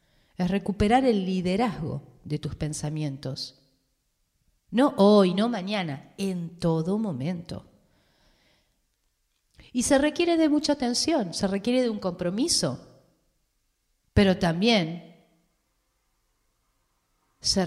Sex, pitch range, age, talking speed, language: female, 165-220 Hz, 40-59, 95 wpm, Spanish